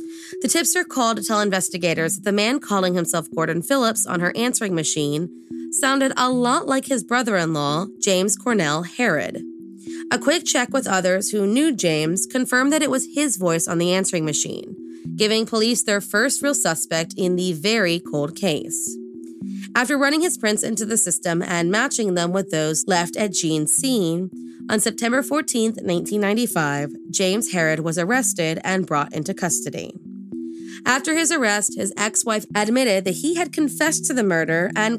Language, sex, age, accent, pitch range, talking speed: English, female, 20-39, American, 165-245 Hz, 170 wpm